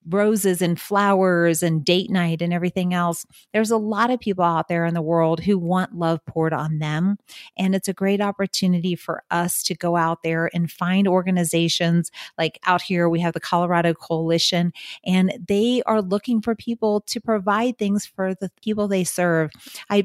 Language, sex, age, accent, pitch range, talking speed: English, female, 40-59, American, 170-200 Hz, 185 wpm